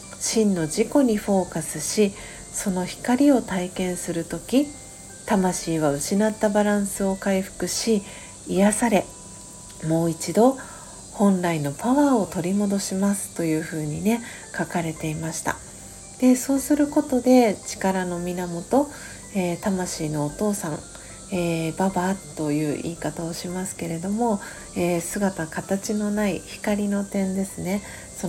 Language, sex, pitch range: Japanese, female, 170-215 Hz